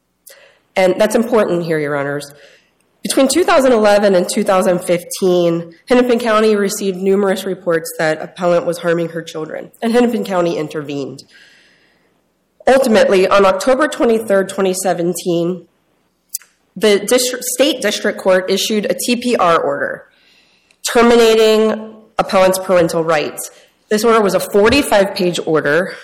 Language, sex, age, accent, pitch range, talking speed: English, female, 30-49, American, 180-230 Hz, 110 wpm